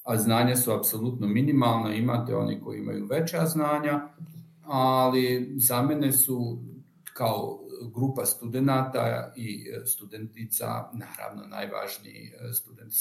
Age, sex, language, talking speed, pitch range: 50-69, male, Croatian, 105 wpm, 110-140 Hz